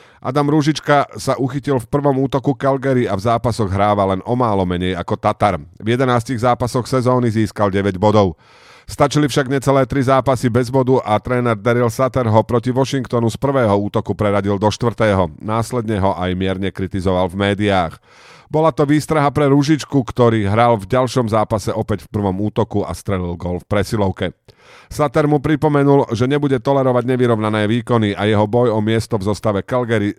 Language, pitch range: Slovak, 105-135 Hz